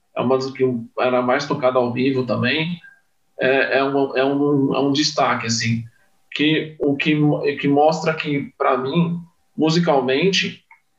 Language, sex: Portuguese, male